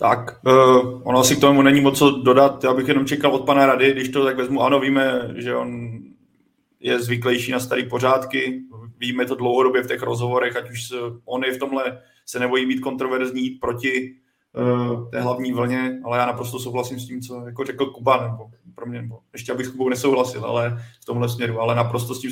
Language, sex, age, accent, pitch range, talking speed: Czech, male, 20-39, native, 120-130 Hz, 215 wpm